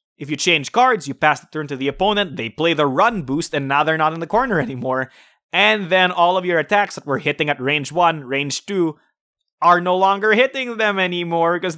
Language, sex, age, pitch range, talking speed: English, male, 20-39, 135-190 Hz, 230 wpm